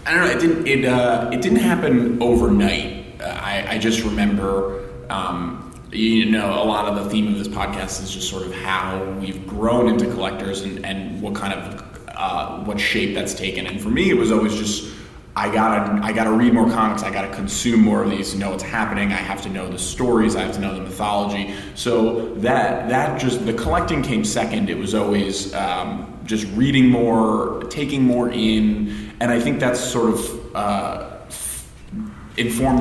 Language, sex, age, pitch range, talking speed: English, male, 20-39, 100-115 Hz, 200 wpm